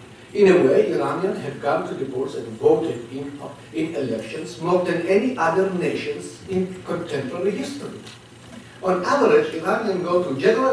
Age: 60-79